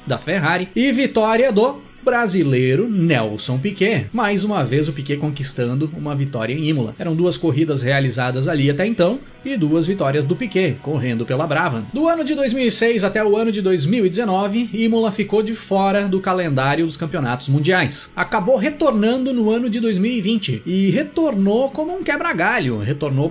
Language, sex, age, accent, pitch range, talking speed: Portuguese, male, 30-49, Brazilian, 140-220 Hz, 160 wpm